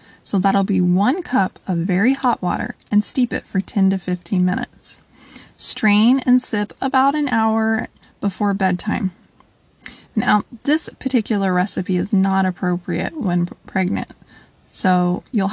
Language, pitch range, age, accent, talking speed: English, 190-245 Hz, 20-39, American, 140 wpm